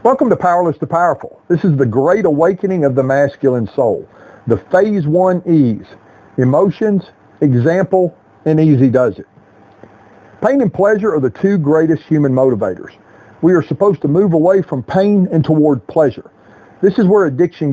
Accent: American